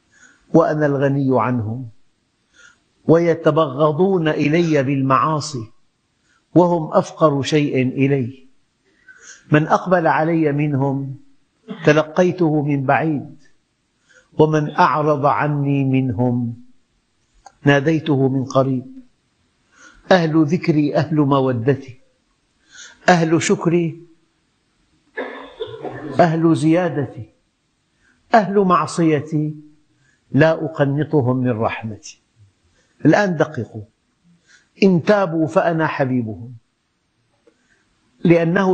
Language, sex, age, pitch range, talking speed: Arabic, male, 50-69, 135-165 Hz, 70 wpm